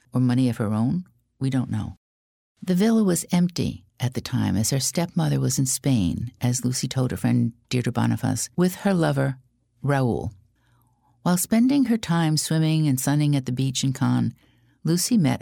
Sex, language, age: female, English, 50-69